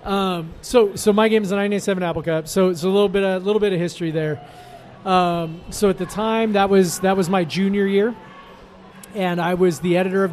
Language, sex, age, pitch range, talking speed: English, male, 30-49, 165-195 Hz, 230 wpm